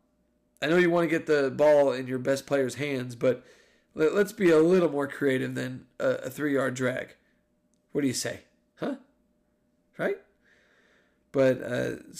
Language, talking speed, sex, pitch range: English, 155 wpm, male, 125-145 Hz